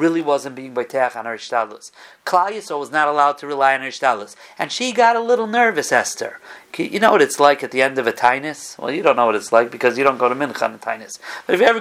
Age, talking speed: 40-59, 275 wpm